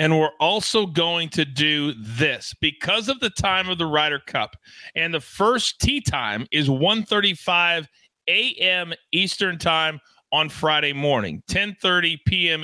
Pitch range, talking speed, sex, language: 150-210 Hz, 140 wpm, male, English